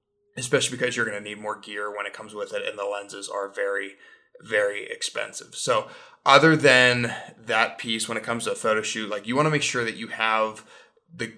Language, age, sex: English, 20-39, male